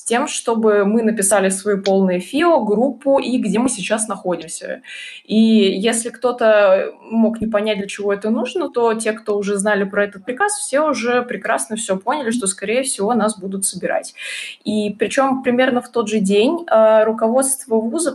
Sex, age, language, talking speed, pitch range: female, 20-39, Russian, 170 wpm, 195-240 Hz